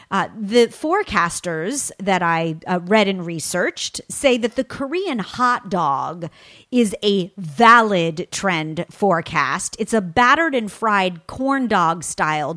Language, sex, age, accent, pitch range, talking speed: English, female, 30-49, American, 180-235 Hz, 135 wpm